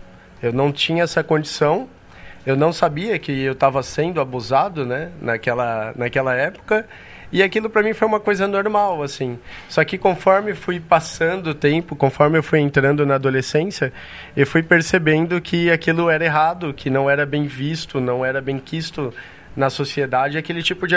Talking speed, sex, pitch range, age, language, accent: 170 wpm, male, 135-180 Hz, 20-39, Portuguese, Brazilian